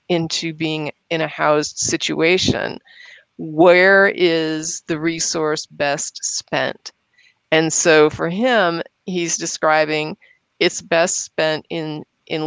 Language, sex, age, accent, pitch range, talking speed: English, female, 30-49, American, 155-185 Hz, 110 wpm